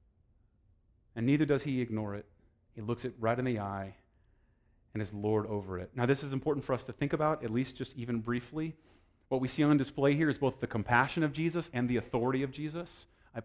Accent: American